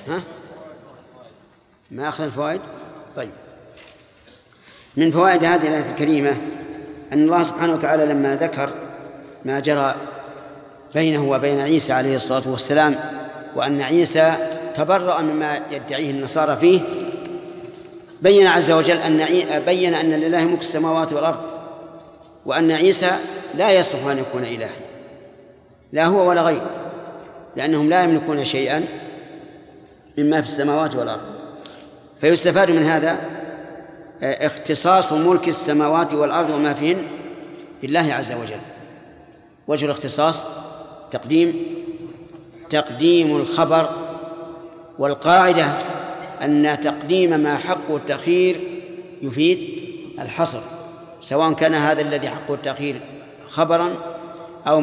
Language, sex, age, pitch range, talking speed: Arabic, male, 40-59, 150-175 Hz, 105 wpm